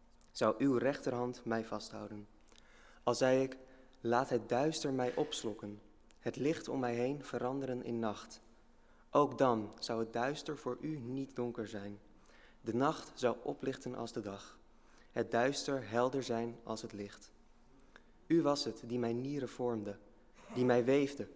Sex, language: male, English